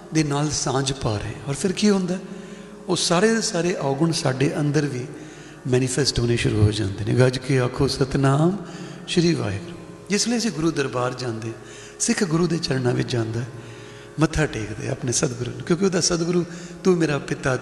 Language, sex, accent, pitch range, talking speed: English, male, Indian, 130-170 Hz, 150 wpm